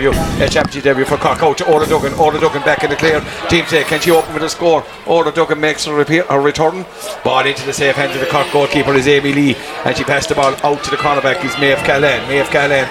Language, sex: English, male